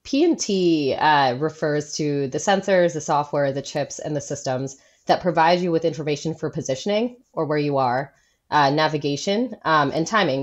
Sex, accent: female, American